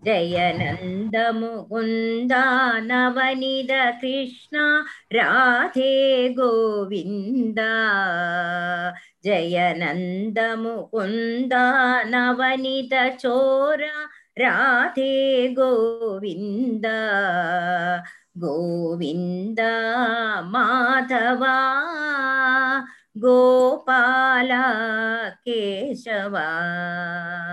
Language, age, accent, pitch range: Tamil, 30-49, native, 225-325 Hz